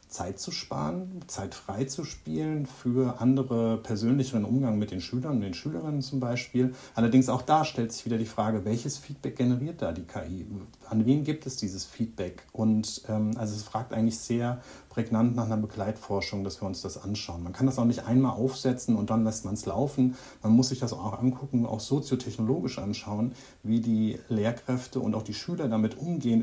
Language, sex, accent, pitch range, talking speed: German, male, German, 110-130 Hz, 190 wpm